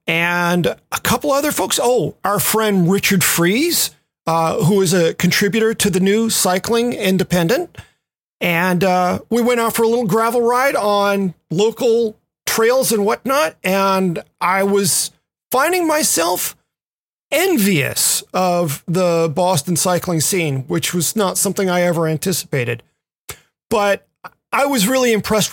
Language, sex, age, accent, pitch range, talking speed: English, male, 40-59, American, 175-220 Hz, 135 wpm